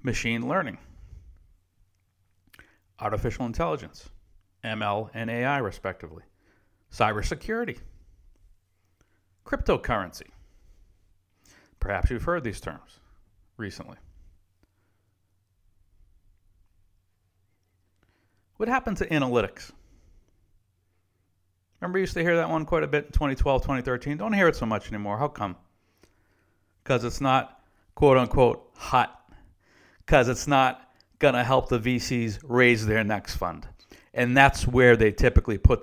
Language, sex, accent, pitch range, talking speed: English, male, American, 95-130 Hz, 105 wpm